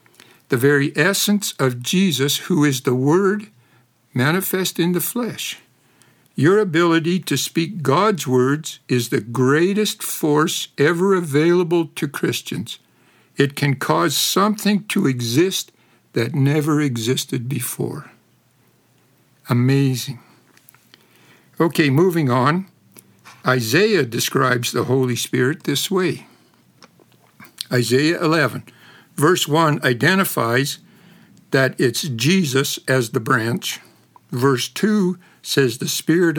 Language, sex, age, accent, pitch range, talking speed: English, male, 60-79, American, 130-170 Hz, 105 wpm